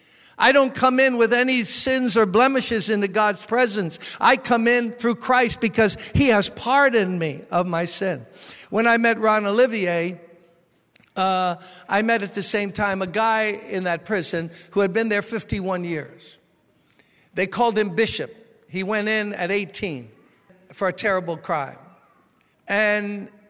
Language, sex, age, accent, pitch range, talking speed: English, male, 60-79, American, 170-215 Hz, 160 wpm